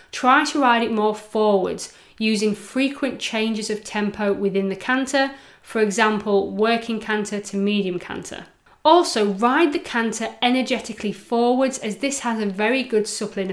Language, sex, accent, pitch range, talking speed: English, female, British, 200-255 Hz, 150 wpm